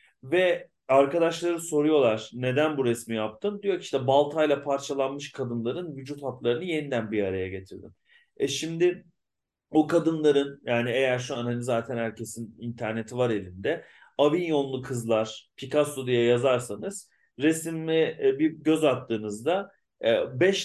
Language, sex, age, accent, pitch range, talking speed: Turkish, male, 40-59, native, 115-150 Hz, 125 wpm